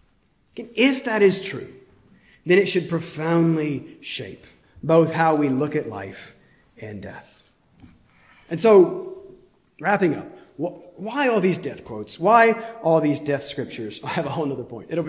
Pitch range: 150-215 Hz